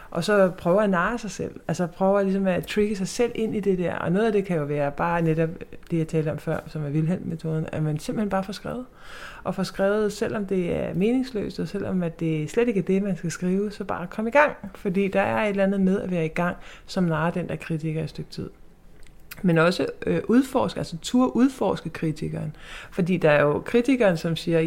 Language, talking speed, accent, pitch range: Danish, 240 wpm, native, 155-195 Hz